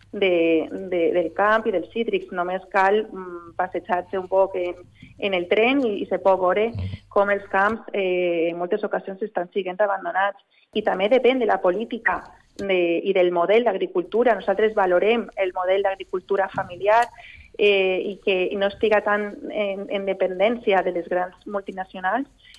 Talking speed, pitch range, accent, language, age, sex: 165 wpm, 185-220 Hz, Spanish, Spanish, 30-49, female